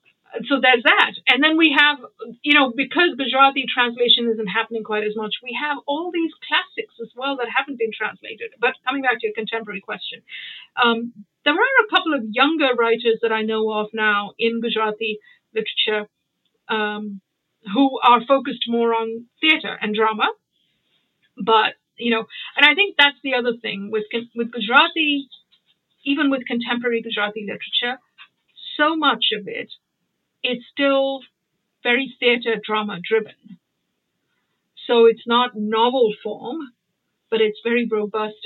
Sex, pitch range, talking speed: female, 215-255 Hz, 150 wpm